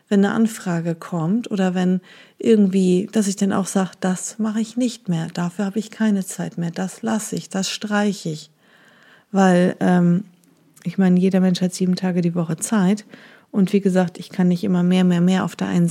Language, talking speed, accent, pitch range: German, 205 wpm, German, 175-210 Hz